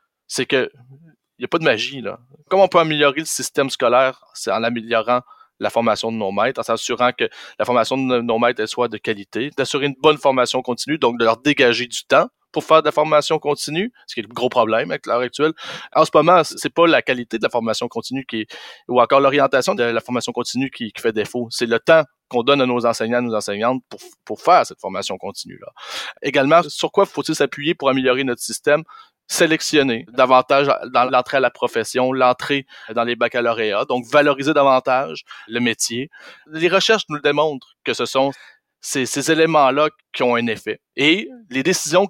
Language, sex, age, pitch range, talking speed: French, male, 30-49, 120-160 Hz, 205 wpm